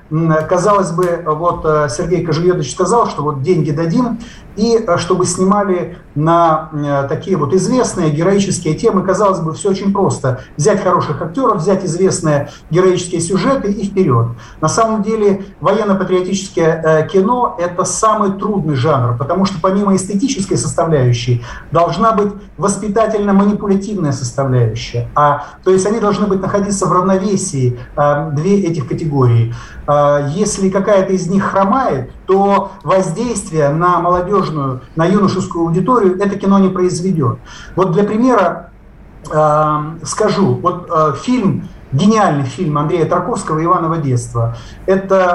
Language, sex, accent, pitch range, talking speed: Russian, male, native, 155-195 Hz, 125 wpm